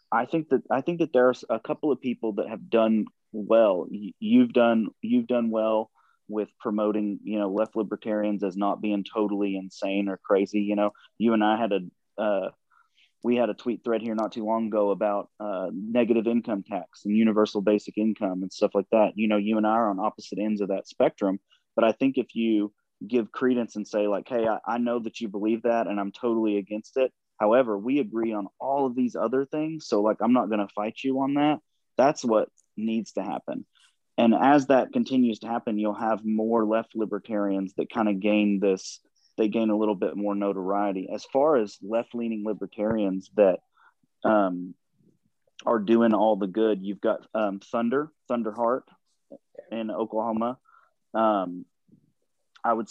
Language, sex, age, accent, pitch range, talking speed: English, male, 30-49, American, 105-115 Hz, 190 wpm